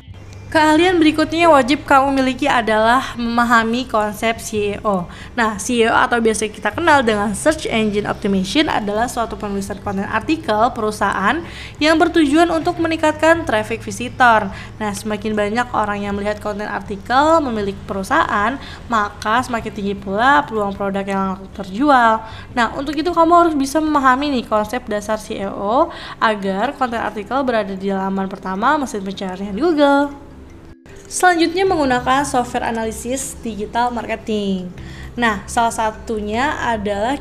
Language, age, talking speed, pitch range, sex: Indonesian, 20-39, 130 wpm, 210-275 Hz, female